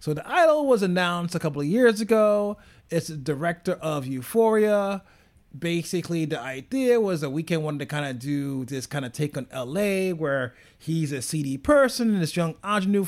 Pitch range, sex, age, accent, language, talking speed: 145-195 Hz, male, 30-49, American, English, 190 wpm